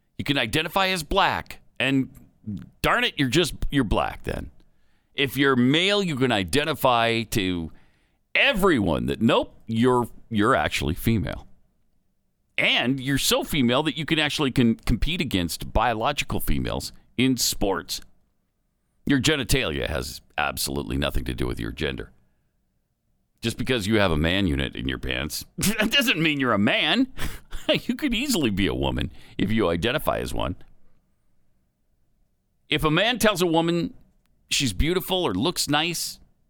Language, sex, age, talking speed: English, male, 50-69, 150 wpm